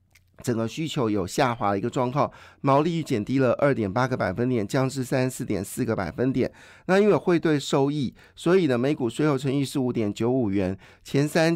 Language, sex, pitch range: Chinese, male, 115-150 Hz